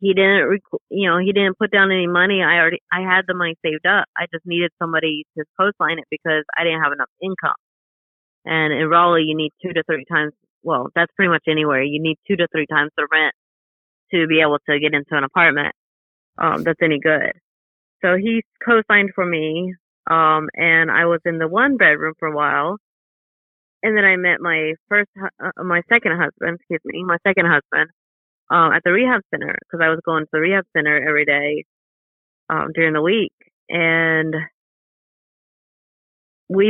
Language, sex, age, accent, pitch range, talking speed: English, female, 30-49, American, 155-180 Hz, 190 wpm